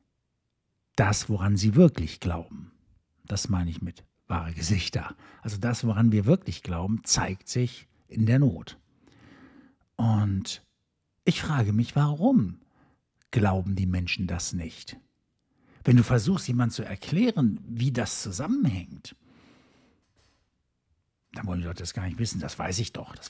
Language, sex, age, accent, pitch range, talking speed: German, male, 60-79, German, 90-120 Hz, 140 wpm